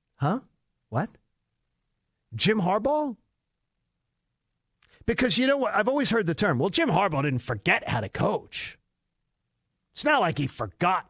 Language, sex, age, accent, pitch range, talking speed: English, male, 50-69, American, 140-225 Hz, 140 wpm